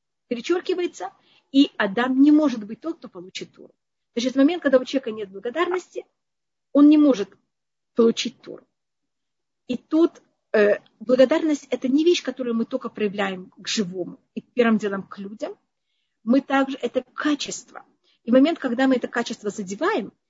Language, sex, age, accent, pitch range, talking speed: Russian, female, 40-59, native, 210-265 Hz, 155 wpm